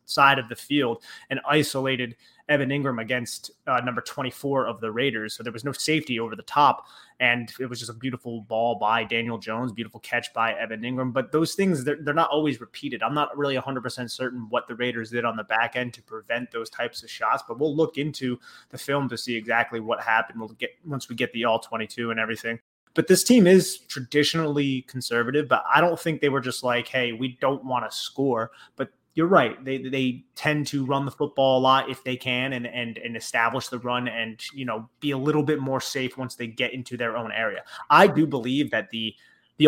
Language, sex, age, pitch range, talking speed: English, male, 20-39, 115-140 Hz, 225 wpm